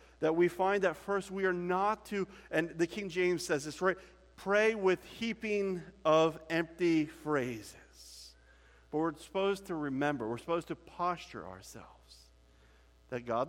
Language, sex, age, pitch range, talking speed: English, male, 50-69, 125-180 Hz, 150 wpm